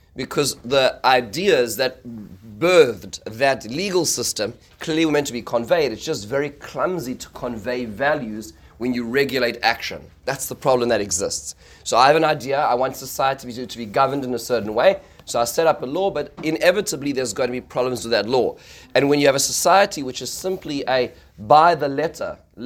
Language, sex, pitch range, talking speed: English, male, 120-145 Hz, 200 wpm